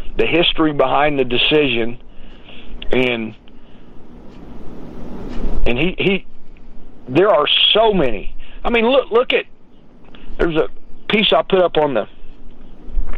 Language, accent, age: English, American, 60-79